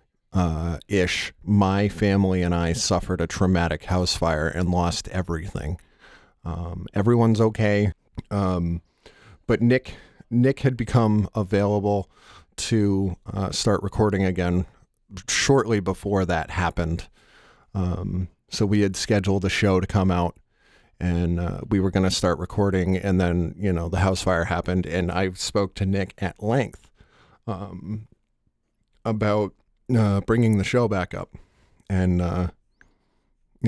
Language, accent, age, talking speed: English, American, 40-59, 135 wpm